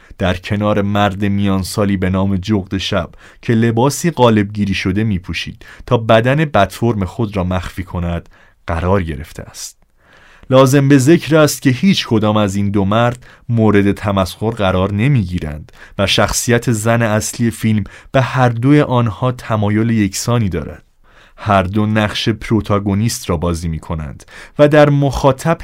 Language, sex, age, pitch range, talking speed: Persian, male, 30-49, 95-120 Hz, 145 wpm